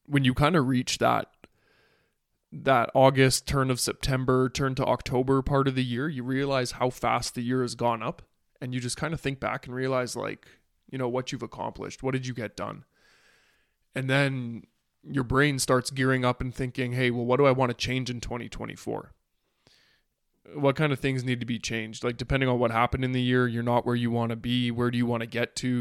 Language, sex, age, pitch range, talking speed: English, male, 20-39, 120-135 Hz, 225 wpm